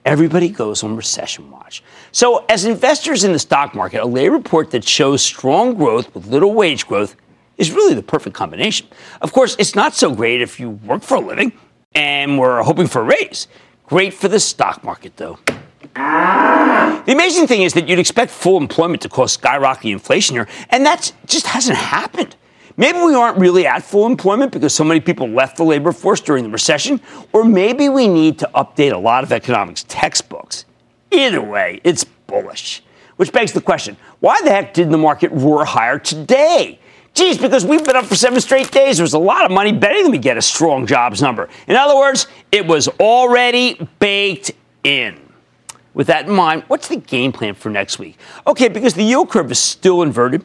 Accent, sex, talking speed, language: American, male, 195 wpm, English